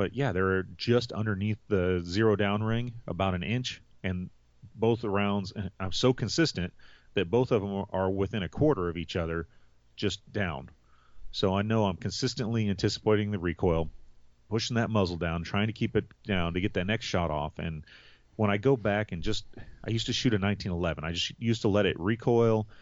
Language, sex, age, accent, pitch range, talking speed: English, male, 30-49, American, 85-110 Hz, 195 wpm